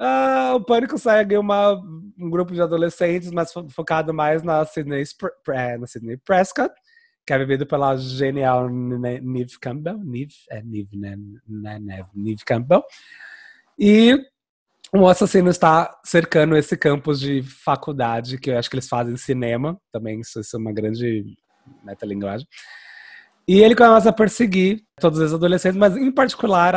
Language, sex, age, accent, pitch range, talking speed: Portuguese, male, 20-39, Brazilian, 140-205 Hz, 130 wpm